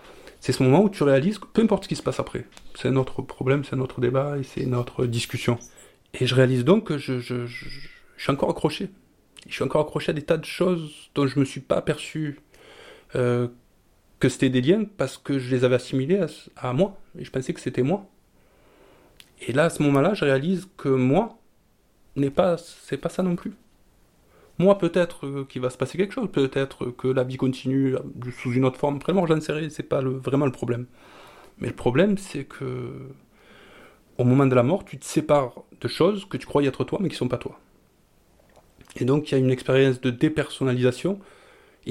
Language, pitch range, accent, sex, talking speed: French, 130-165 Hz, French, male, 220 wpm